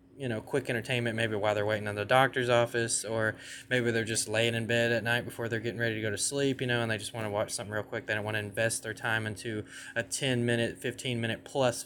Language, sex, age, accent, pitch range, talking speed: English, male, 20-39, American, 110-135 Hz, 275 wpm